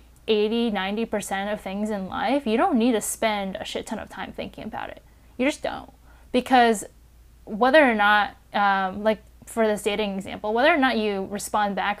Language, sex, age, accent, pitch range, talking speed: English, female, 10-29, American, 200-240 Hz, 195 wpm